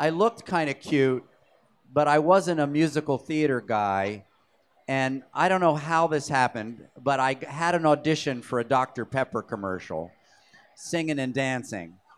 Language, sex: English, male